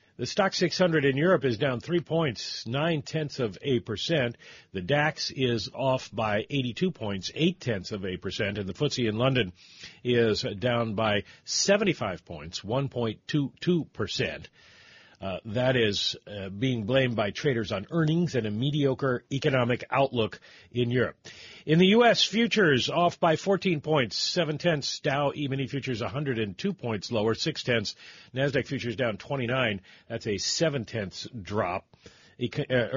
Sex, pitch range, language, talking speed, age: male, 105-140 Hz, English, 145 wpm, 50-69